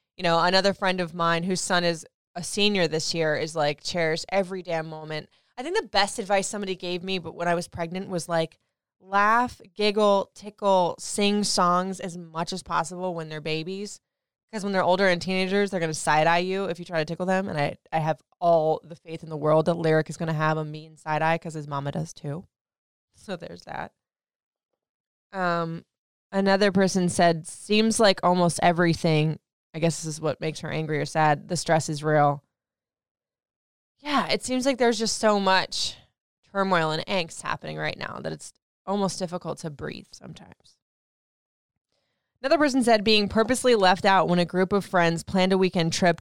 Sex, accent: female, American